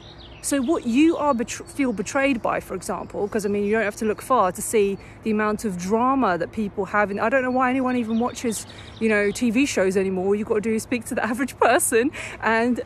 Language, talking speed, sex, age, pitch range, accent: English, 240 wpm, female, 30-49, 205-265 Hz, British